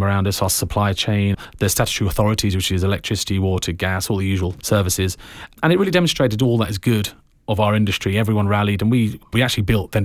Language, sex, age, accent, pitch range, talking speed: English, male, 40-59, British, 95-115 Hz, 215 wpm